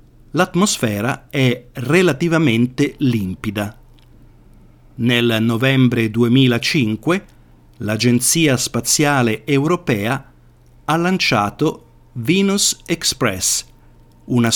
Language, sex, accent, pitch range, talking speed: Italian, male, native, 115-150 Hz, 60 wpm